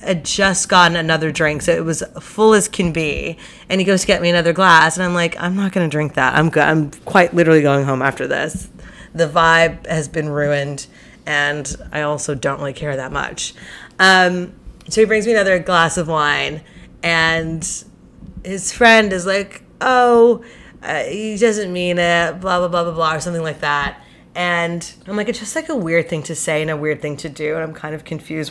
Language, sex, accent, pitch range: English, female, American, 155-190 Hz